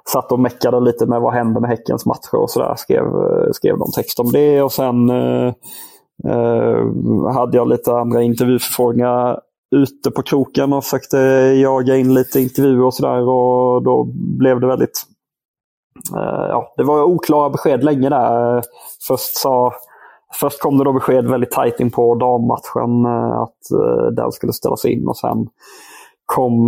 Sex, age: male, 20-39